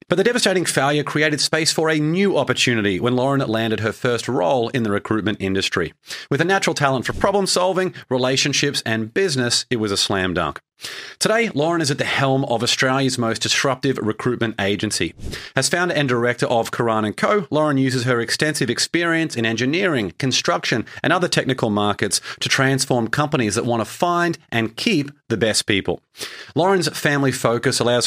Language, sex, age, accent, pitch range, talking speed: English, male, 30-49, Australian, 110-150 Hz, 175 wpm